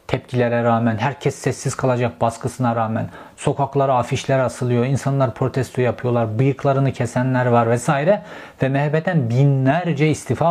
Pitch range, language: 120-145 Hz, Turkish